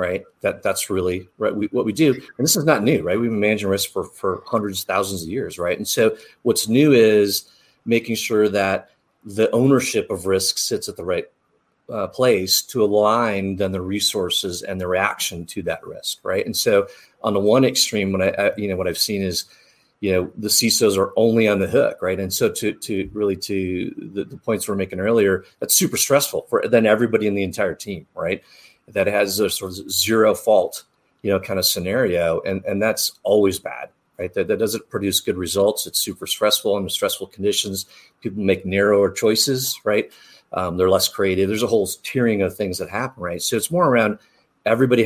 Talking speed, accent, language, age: 210 wpm, American, English, 40-59